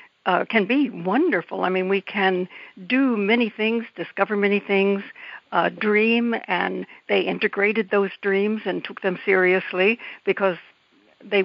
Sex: female